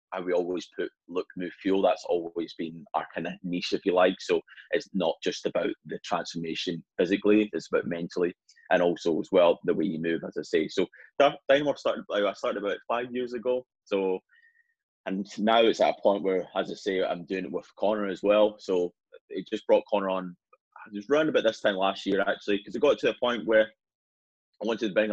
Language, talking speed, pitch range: English, 215 wpm, 95-115 Hz